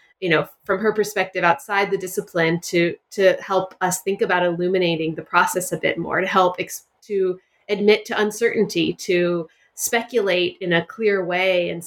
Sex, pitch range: female, 175-205 Hz